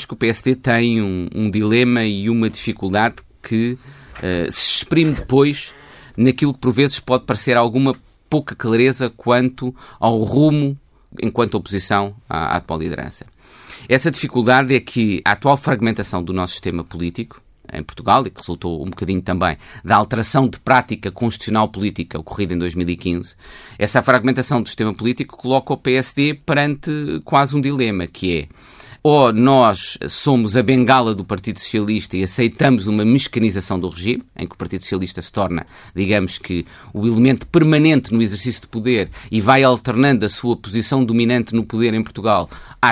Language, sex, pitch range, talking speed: Portuguese, male, 100-135 Hz, 160 wpm